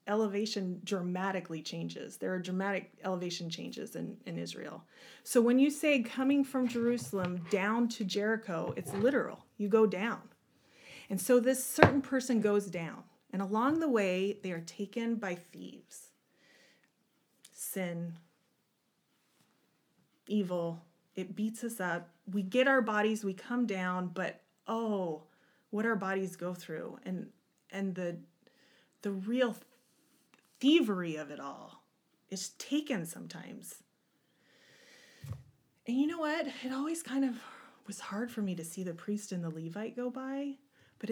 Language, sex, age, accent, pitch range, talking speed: English, female, 30-49, American, 180-240 Hz, 140 wpm